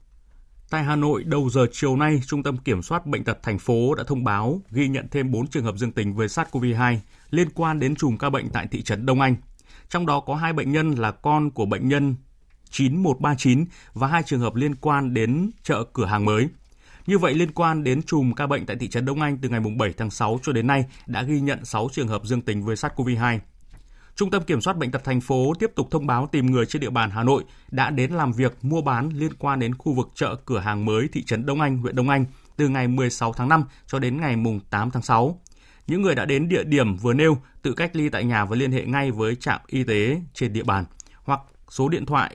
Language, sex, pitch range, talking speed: Vietnamese, male, 120-150 Hz, 245 wpm